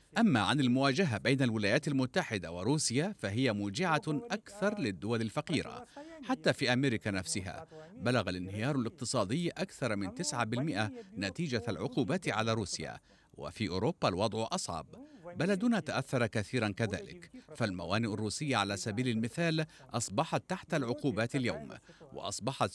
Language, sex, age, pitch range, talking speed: Arabic, male, 50-69, 115-165 Hz, 115 wpm